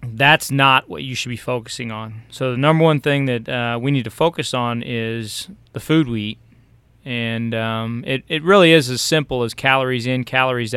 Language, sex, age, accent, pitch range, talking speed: English, male, 30-49, American, 120-145 Hz, 205 wpm